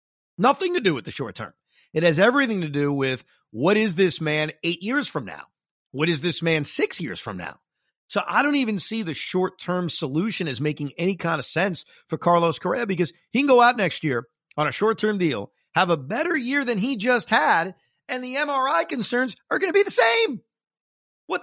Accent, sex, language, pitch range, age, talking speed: American, male, English, 165-240 Hz, 40-59, 220 wpm